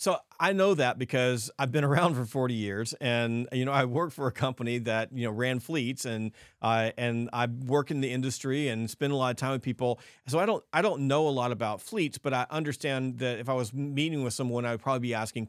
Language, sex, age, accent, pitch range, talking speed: English, male, 40-59, American, 115-145 Hz, 255 wpm